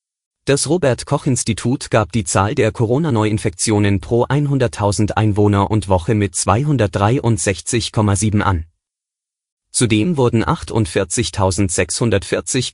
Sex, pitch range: male, 100-130 Hz